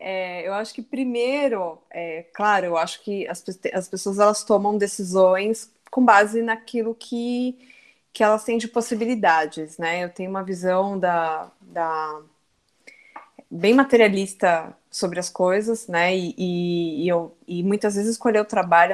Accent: Brazilian